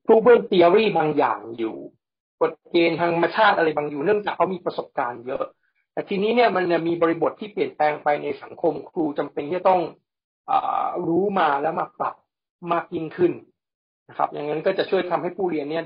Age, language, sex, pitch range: 60-79, Thai, male, 160-230 Hz